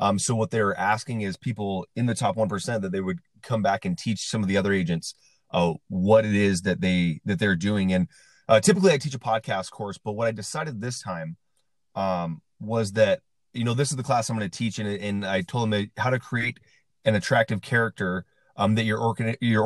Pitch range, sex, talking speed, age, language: 100-130 Hz, male, 230 wpm, 30-49, English